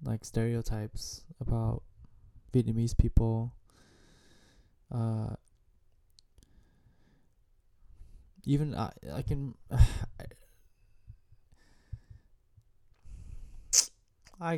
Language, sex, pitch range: English, male, 100-125 Hz